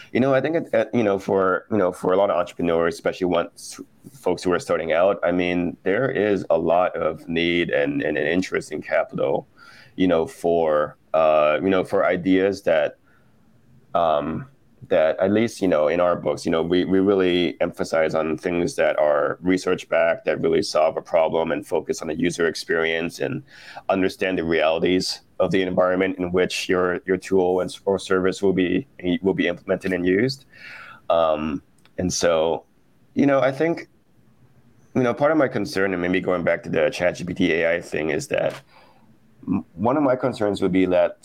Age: 30-49